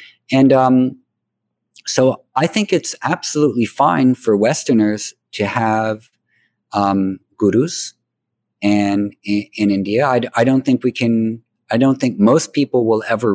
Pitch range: 105-130 Hz